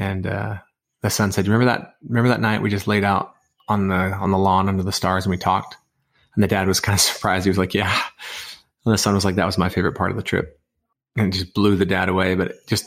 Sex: male